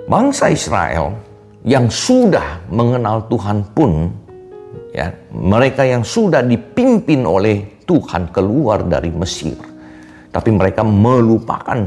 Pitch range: 90-140 Hz